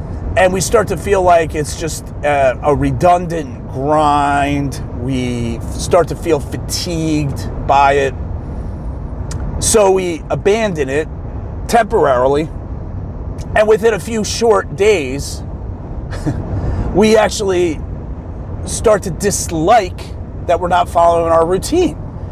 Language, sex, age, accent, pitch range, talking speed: English, male, 40-59, American, 115-175 Hz, 110 wpm